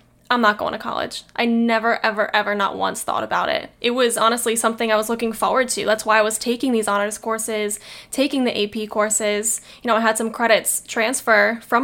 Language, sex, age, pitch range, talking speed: English, female, 10-29, 220-245 Hz, 220 wpm